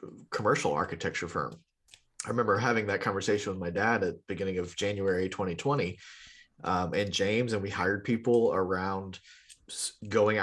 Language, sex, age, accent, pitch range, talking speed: English, male, 30-49, American, 95-110 Hz, 150 wpm